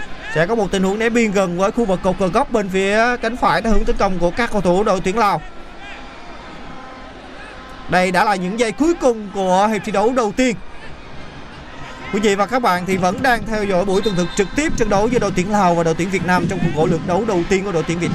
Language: Vietnamese